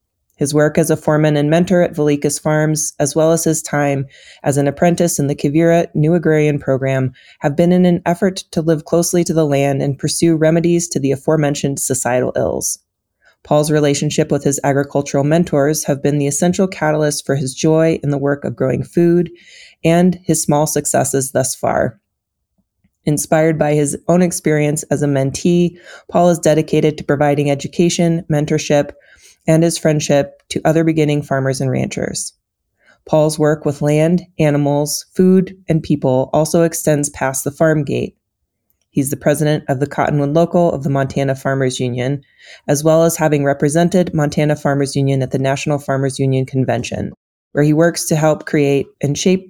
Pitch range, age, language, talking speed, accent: 140-165 Hz, 20-39, English, 170 wpm, American